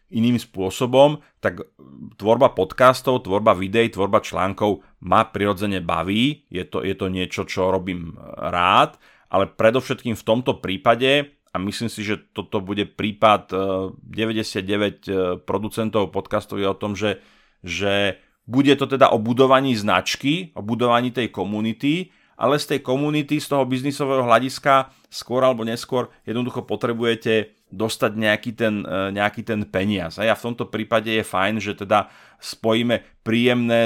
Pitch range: 100-125 Hz